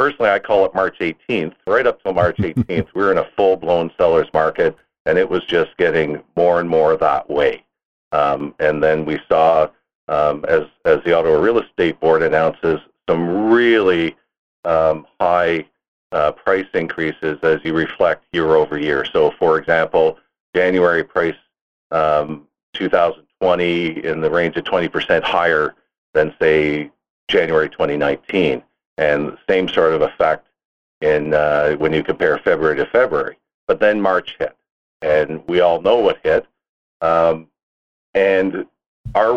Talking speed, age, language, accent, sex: 150 wpm, 50-69, English, American, male